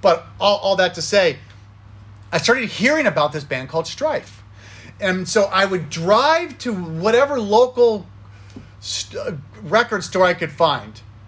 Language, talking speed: English, 145 wpm